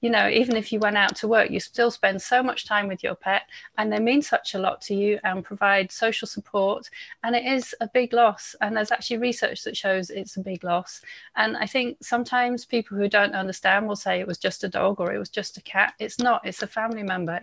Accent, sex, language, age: British, female, English, 30-49